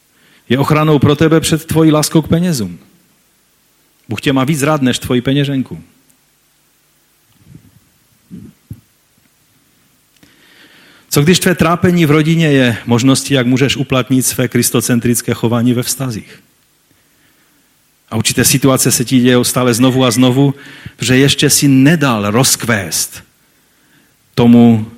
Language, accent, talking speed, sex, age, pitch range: Czech, native, 120 wpm, male, 40-59, 115-155 Hz